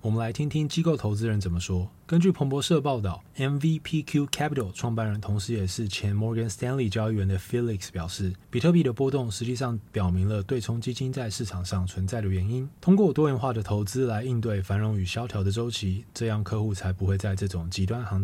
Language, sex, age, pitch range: Chinese, male, 20-39, 95-130 Hz